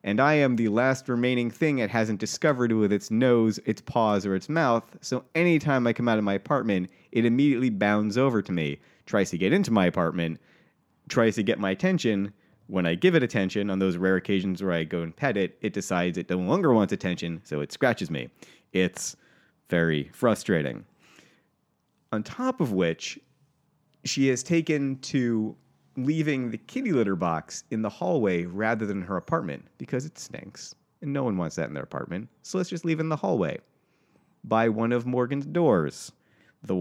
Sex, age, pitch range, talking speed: male, 30-49, 95-145 Hz, 190 wpm